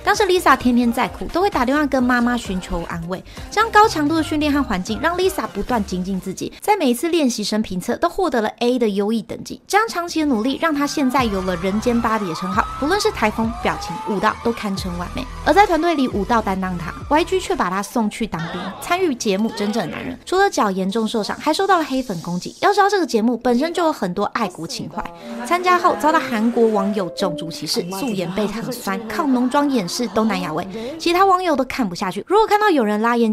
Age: 20-39